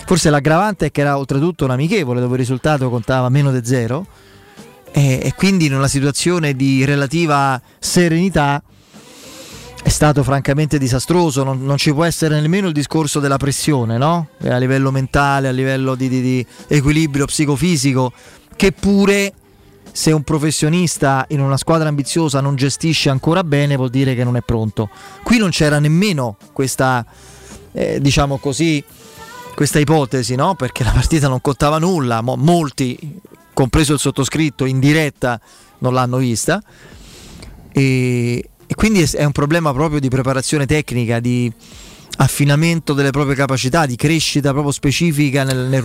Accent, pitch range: native, 130-160 Hz